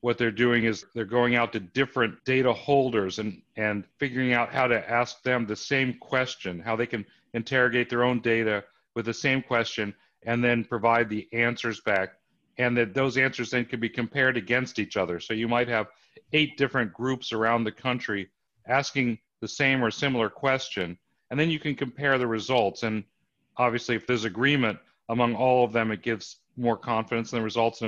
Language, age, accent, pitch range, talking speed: English, 40-59, American, 110-130 Hz, 195 wpm